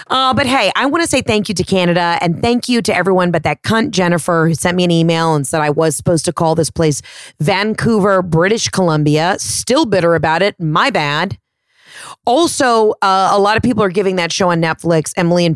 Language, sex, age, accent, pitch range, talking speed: English, female, 30-49, American, 170-270 Hz, 220 wpm